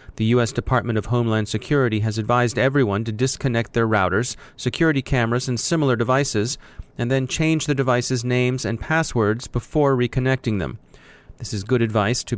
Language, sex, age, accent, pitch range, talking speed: English, male, 30-49, American, 110-135 Hz, 165 wpm